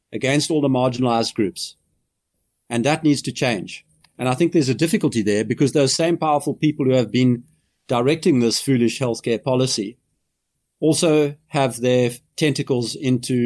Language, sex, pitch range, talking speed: English, male, 115-150 Hz, 155 wpm